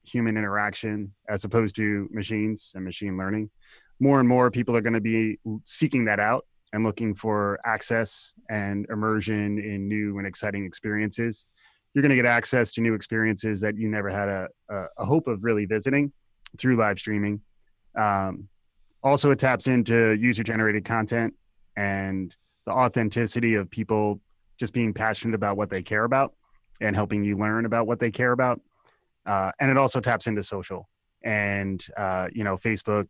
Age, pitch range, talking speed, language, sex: 20-39, 100-115 Hz, 170 wpm, English, male